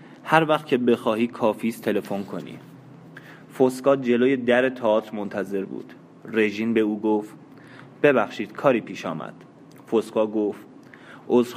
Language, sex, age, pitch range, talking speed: Persian, male, 20-39, 110-130 Hz, 125 wpm